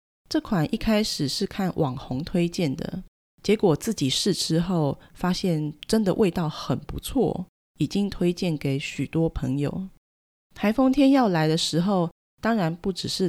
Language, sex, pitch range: Chinese, female, 150-190 Hz